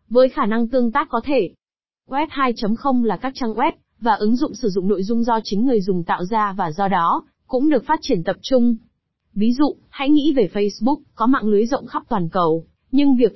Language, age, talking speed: Vietnamese, 20-39, 225 wpm